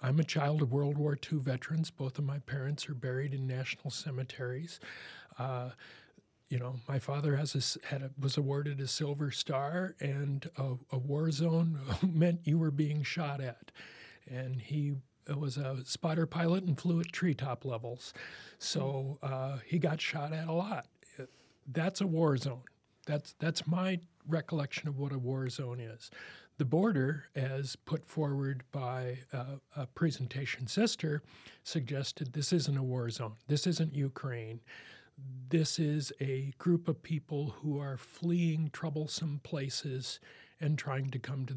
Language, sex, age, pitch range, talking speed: English, male, 40-59, 130-160 Hz, 160 wpm